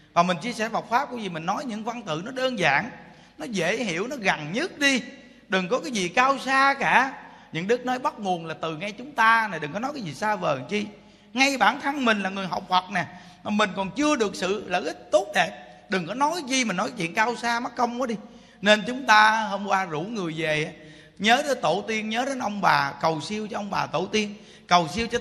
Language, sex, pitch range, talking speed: Vietnamese, male, 185-245 Hz, 255 wpm